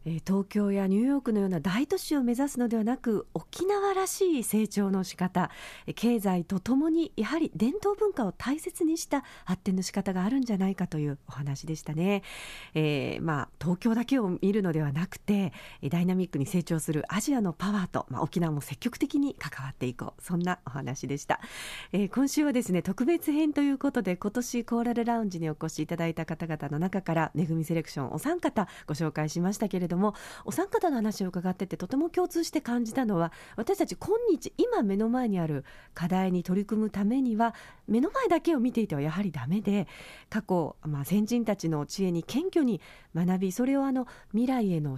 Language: Japanese